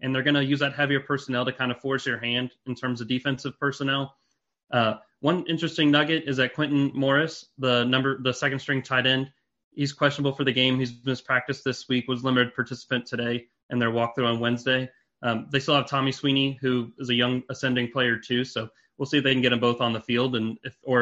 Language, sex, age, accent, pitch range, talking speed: English, male, 30-49, American, 120-135 Hz, 225 wpm